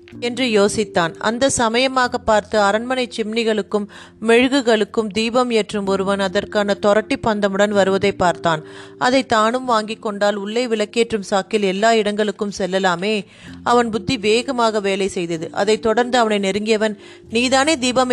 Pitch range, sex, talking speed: 200-235 Hz, female, 125 wpm